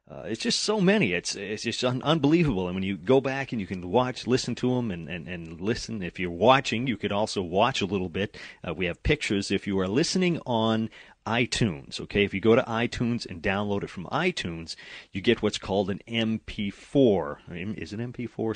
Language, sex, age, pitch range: English, male, 30-49, 95-120 Hz